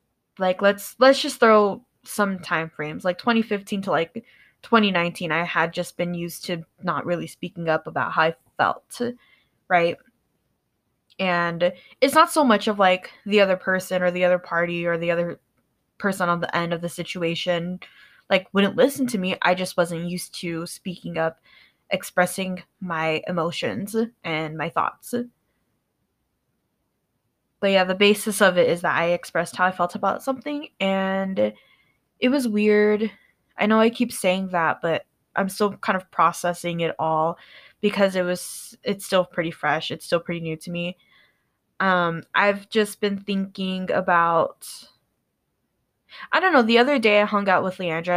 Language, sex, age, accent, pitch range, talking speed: English, female, 10-29, American, 170-205 Hz, 170 wpm